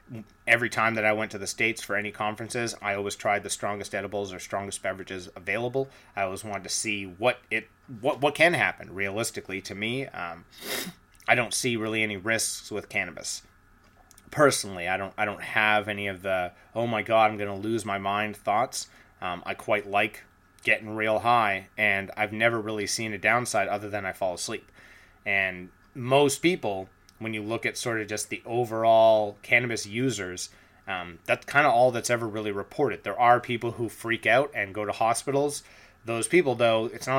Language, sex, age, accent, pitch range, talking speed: English, male, 30-49, American, 100-120 Hz, 190 wpm